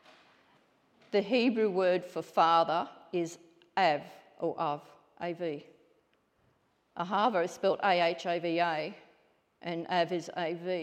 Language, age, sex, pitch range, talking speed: English, 50-69, female, 165-205 Hz, 100 wpm